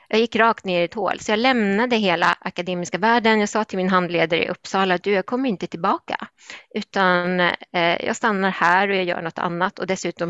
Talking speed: 210 wpm